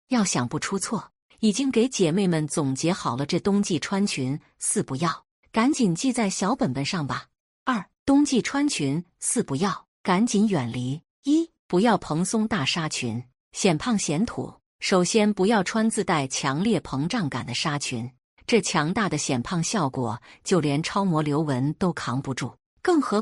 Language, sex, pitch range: Chinese, female, 145-220 Hz